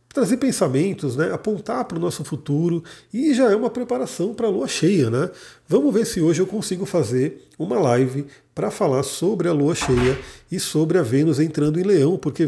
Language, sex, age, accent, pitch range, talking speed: Portuguese, male, 40-59, Brazilian, 130-175 Hz, 195 wpm